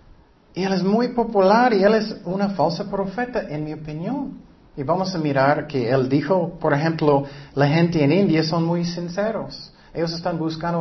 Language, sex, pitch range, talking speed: Spanish, male, 145-200 Hz, 185 wpm